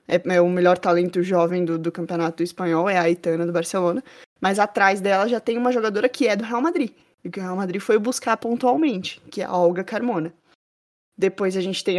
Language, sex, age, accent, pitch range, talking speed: Portuguese, female, 20-39, Brazilian, 185-240 Hz, 220 wpm